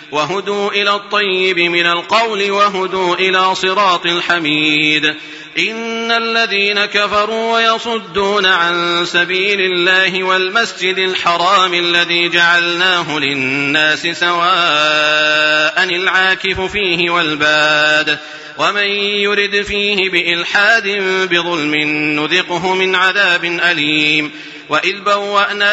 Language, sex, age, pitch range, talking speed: Arabic, male, 40-59, 170-205 Hz, 85 wpm